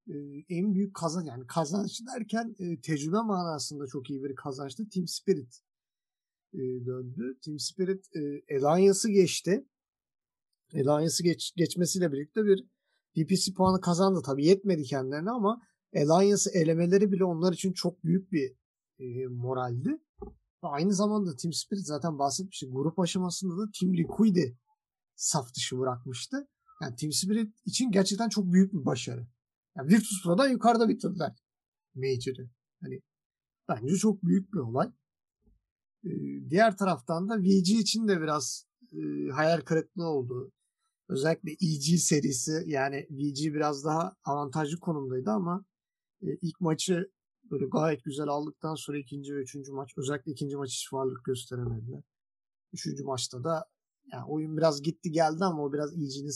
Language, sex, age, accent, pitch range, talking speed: Turkish, male, 50-69, native, 140-195 Hz, 140 wpm